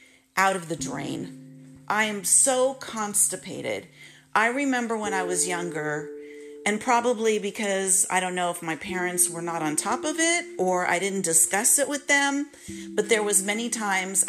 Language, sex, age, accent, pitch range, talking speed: English, female, 40-59, American, 165-215 Hz, 170 wpm